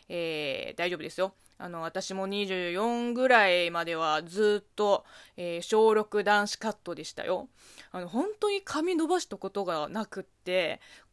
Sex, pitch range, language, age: female, 205-330 Hz, Japanese, 20-39